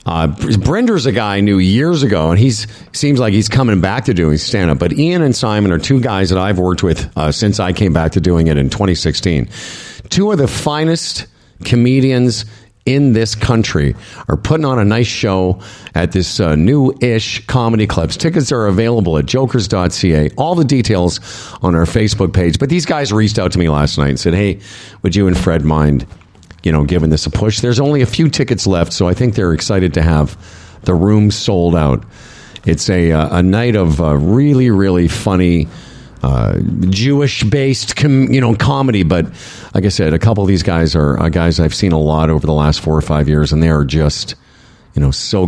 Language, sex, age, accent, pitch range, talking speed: English, male, 50-69, American, 80-120 Hz, 210 wpm